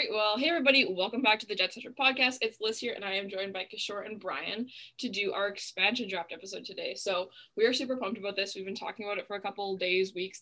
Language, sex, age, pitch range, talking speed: English, female, 10-29, 195-240 Hz, 265 wpm